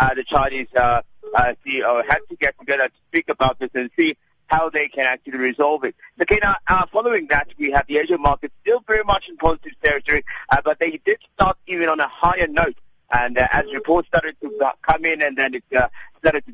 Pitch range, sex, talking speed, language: 130-180 Hz, male, 225 wpm, English